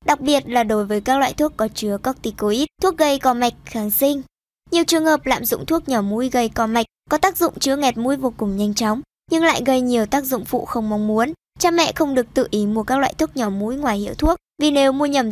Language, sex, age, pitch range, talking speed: Vietnamese, male, 20-39, 220-285 Hz, 265 wpm